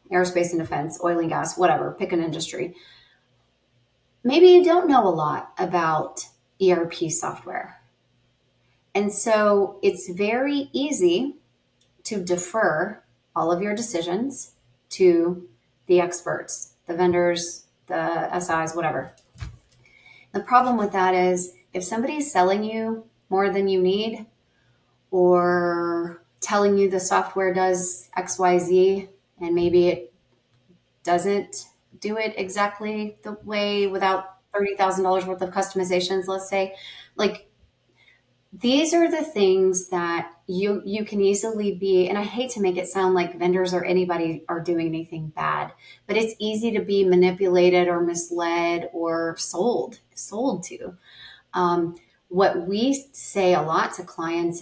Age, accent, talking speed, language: 30-49, American, 135 wpm, English